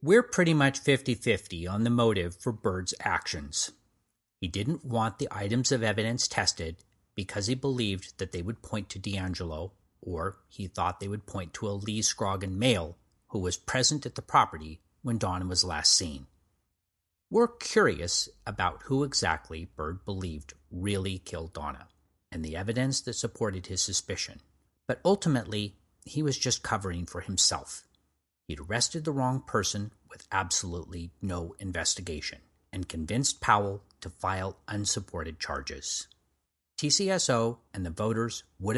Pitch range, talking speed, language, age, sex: 85-115 Hz, 145 wpm, English, 40-59, male